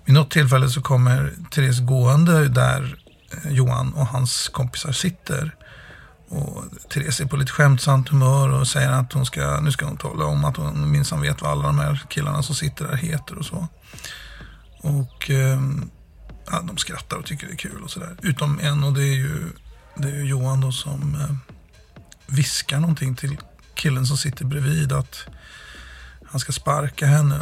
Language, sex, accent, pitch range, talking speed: Swedish, male, native, 135-155 Hz, 175 wpm